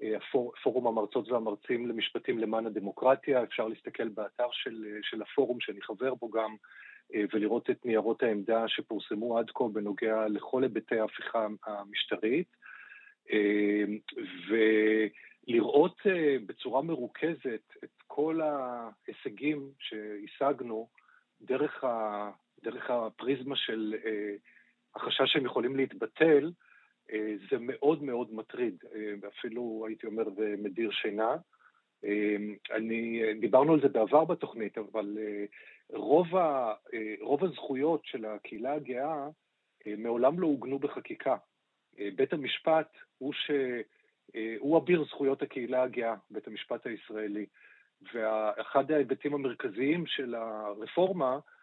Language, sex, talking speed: Hebrew, male, 100 wpm